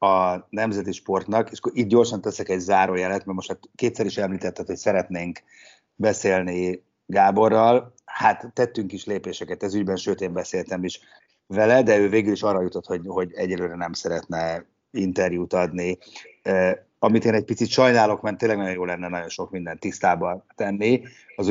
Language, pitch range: Hungarian, 90-115 Hz